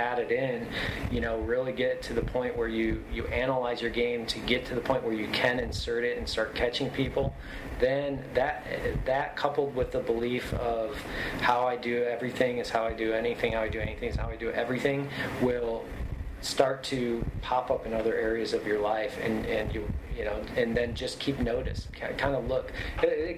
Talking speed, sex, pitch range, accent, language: 205 wpm, male, 115-135 Hz, American, English